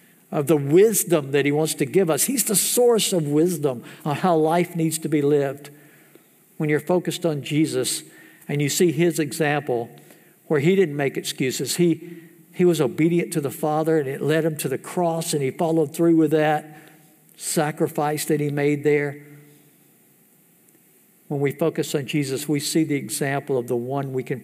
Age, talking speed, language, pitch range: 60-79, 185 wpm, English, 140-170 Hz